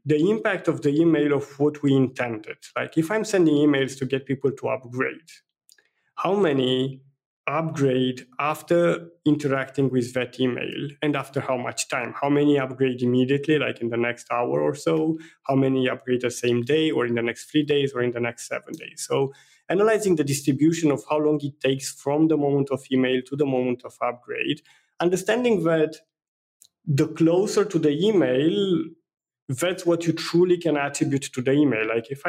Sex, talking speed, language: male, 180 wpm, English